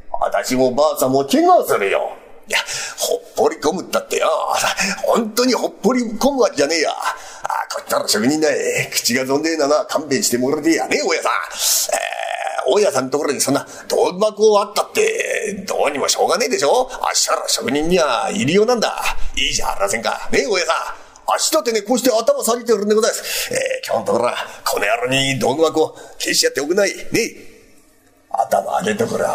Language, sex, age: Japanese, male, 40-59